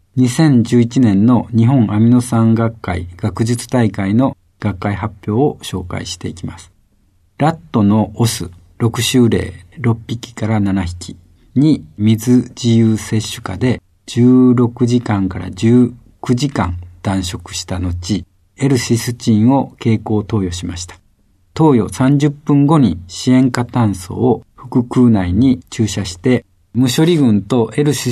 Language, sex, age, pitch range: Japanese, male, 50-69, 95-125 Hz